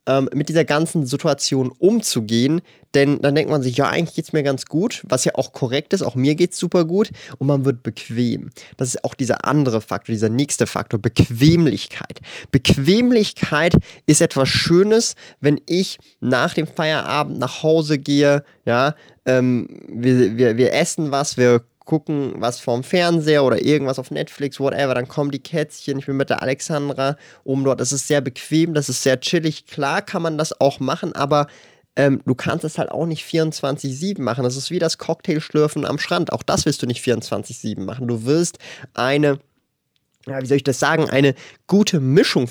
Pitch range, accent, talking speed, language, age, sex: 135-170 Hz, German, 185 wpm, German, 20-39, male